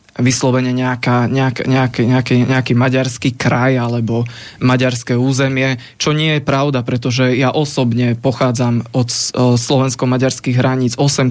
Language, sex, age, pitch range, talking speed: Slovak, male, 20-39, 125-140 Hz, 120 wpm